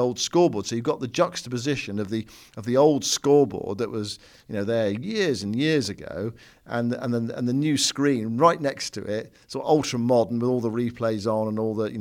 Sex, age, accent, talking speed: male, 50-69, British, 235 wpm